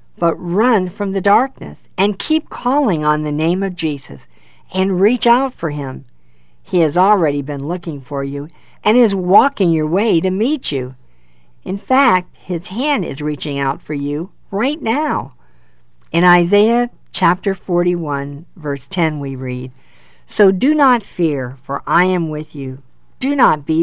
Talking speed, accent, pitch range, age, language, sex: 160 wpm, American, 140-190 Hz, 50-69, English, female